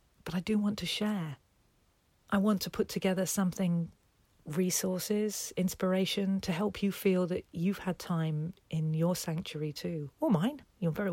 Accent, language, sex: British, English, female